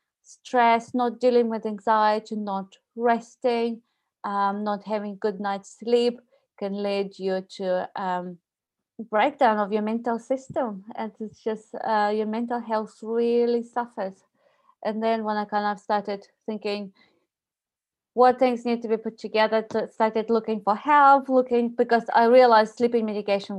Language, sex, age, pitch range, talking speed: English, female, 20-39, 200-235 Hz, 150 wpm